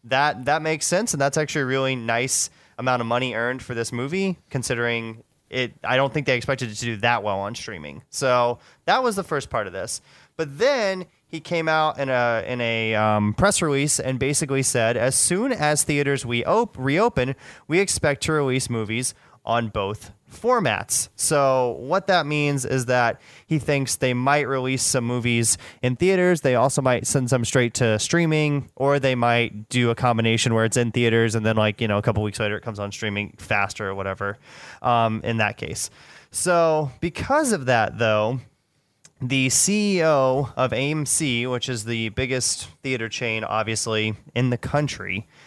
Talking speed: 185 wpm